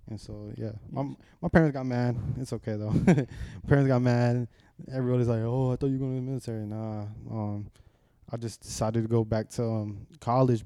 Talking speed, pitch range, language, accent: 205 wpm, 110-125 Hz, English, American